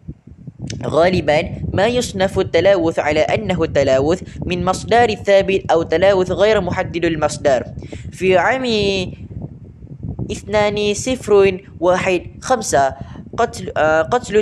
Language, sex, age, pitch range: Malay, female, 10-29, 165-210 Hz